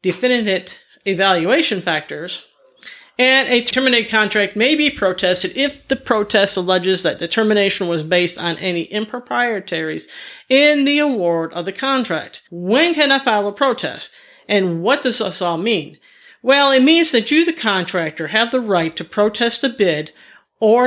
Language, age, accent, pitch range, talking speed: English, 50-69, American, 180-245 Hz, 155 wpm